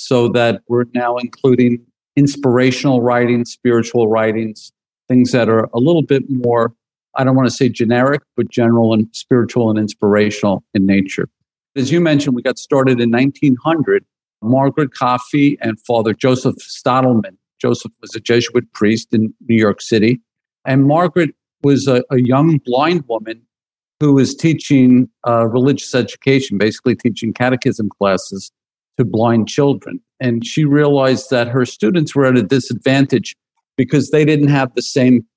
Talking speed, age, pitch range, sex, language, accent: 150 wpm, 50-69, 115-135 Hz, male, English, American